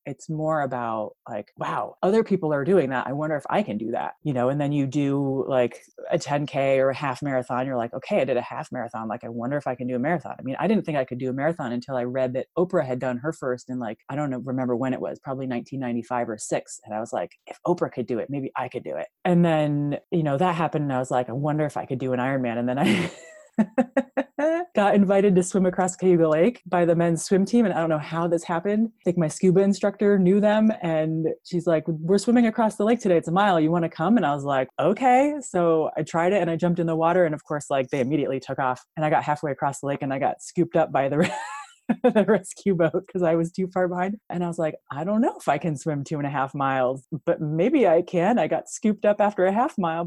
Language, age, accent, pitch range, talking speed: English, 30-49, American, 135-190 Hz, 275 wpm